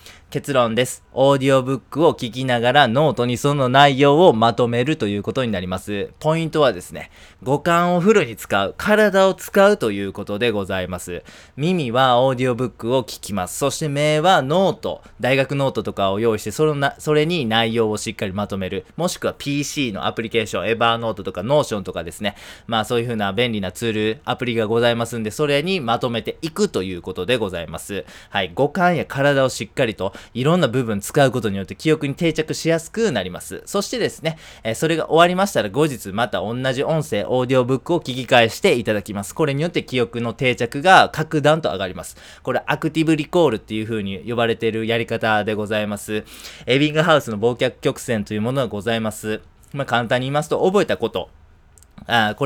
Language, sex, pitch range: Japanese, male, 110-150 Hz